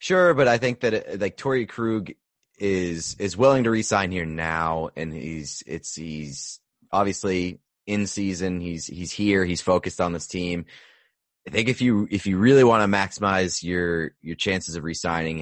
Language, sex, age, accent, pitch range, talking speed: English, male, 30-49, American, 85-100 Hz, 175 wpm